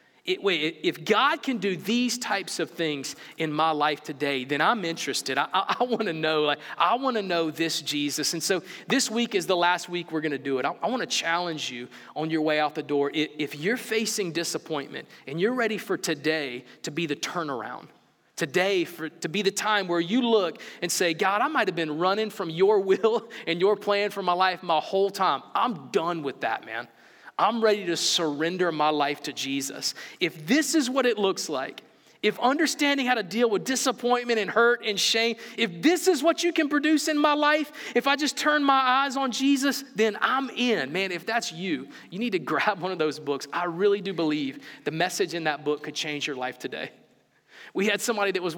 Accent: American